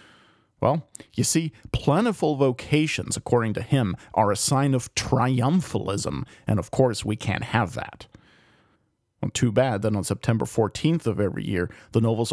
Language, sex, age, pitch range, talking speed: English, male, 40-59, 110-145 Hz, 150 wpm